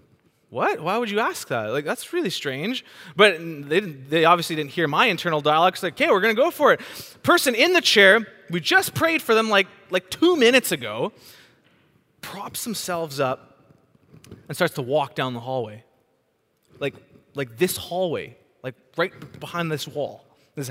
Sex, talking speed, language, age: male, 180 wpm, English, 20-39